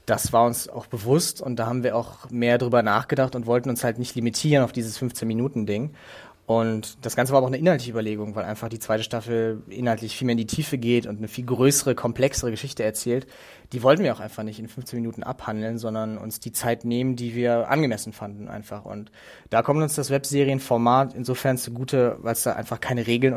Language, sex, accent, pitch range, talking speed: German, male, German, 115-130 Hz, 215 wpm